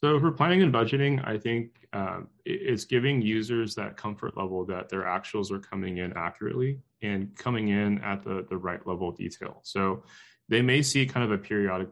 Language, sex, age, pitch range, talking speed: English, male, 20-39, 95-110 Hz, 195 wpm